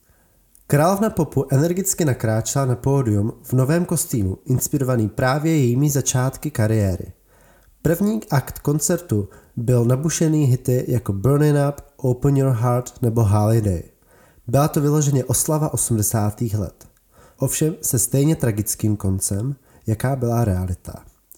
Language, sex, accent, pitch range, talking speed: Czech, male, native, 110-140 Hz, 120 wpm